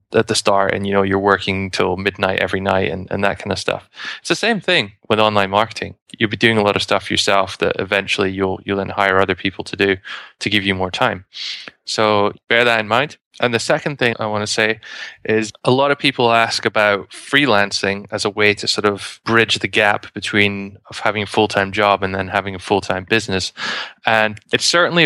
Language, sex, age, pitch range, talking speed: English, male, 20-39, 100-115 Hz, 225 wpm